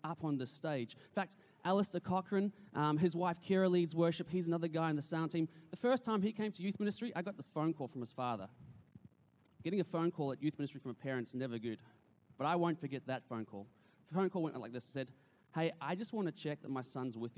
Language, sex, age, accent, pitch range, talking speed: English, male, 20-39, Australian, 130-180 Hz, 255 wpm